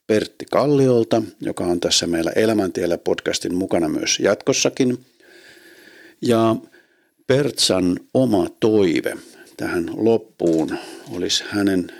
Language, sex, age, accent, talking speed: Finnish, male, 50-69, native, 95 wpm